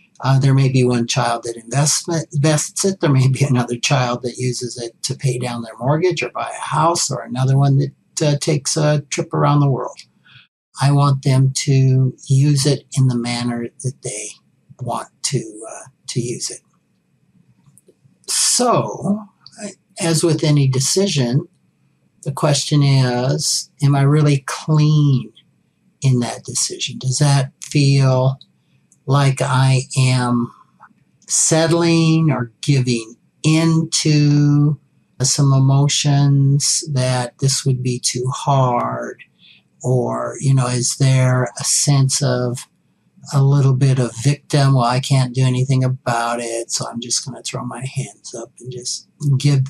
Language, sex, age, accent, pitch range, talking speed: English, male, 60-79, American, 125-150 Hz, 145 wpm